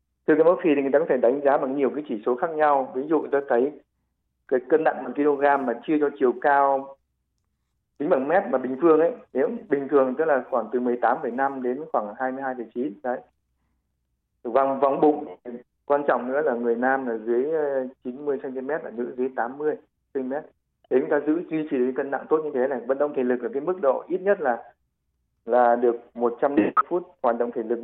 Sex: male